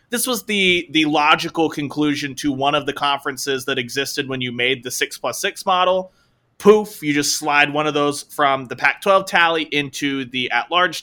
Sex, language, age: male, English, 20-39